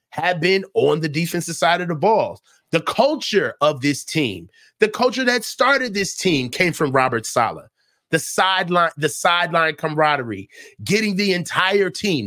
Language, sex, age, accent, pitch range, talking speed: English, male, 30-49, American, 165-255 Hz, 160 wpm